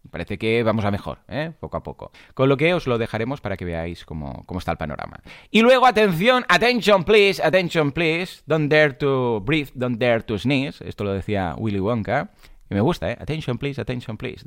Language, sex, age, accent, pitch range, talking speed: Spanish, male, 30-49, Spanish, 100-150 Hz, 210 wpm